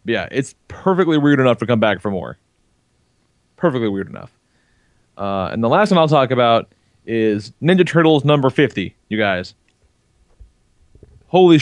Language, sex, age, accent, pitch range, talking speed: English, male, 30-49, American, 110-145 Hz, 150 wpm